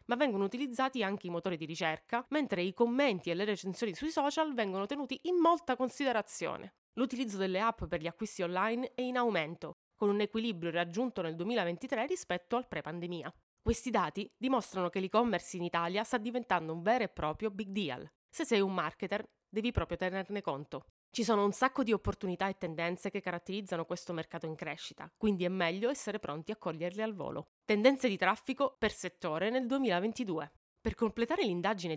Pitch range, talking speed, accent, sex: 175-240 Hz, 180 wpm, native, female